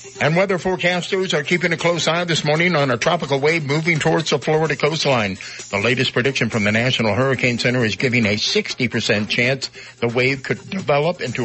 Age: 60-79